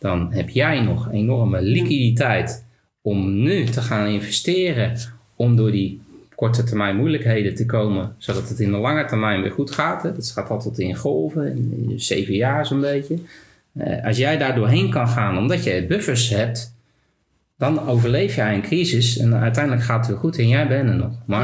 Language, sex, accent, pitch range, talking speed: Dutch, male, Dutch, 105-130 Hz, 180 wpm